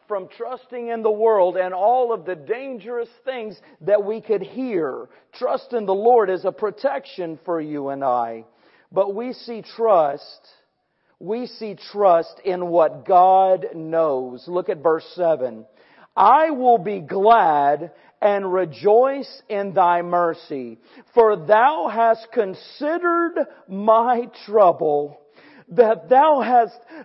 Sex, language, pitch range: male, English, 175-255 Hz